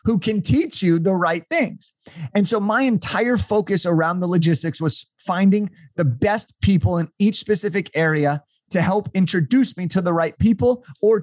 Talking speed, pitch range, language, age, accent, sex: 175 wpm, 165-215 Hz, English, 30-49, American, male